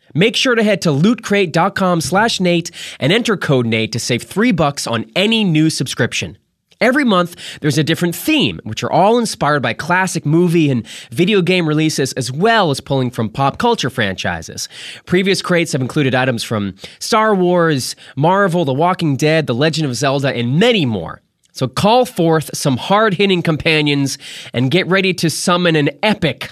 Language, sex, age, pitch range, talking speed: English, male, 20-39, 125-185 Hz, 175 wpm